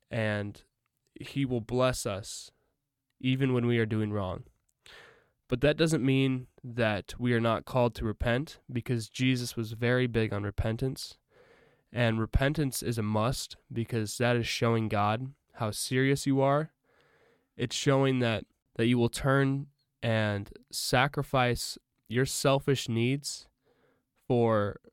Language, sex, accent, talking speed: English, male, American, 135 wpm